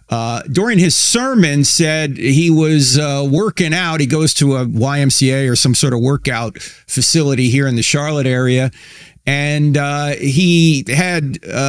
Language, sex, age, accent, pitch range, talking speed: English, male, 50-69, American, 140-190 Hz, 155 wpm